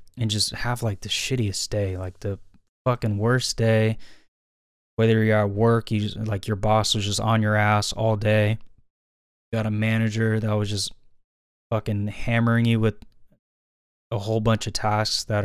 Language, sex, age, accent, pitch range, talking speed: English, male, 20-39, American, 100-110 Hz, 175 wpm